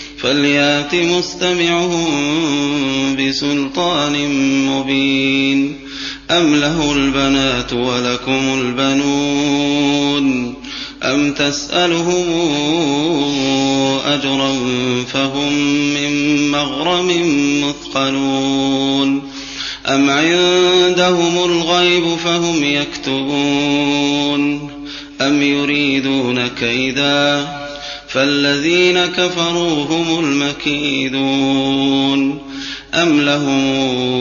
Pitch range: 135-145 Hz